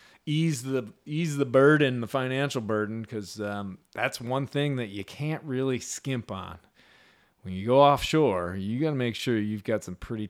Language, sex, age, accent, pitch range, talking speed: English, male, 30-49, American, 100-125 Hz, 185 wpm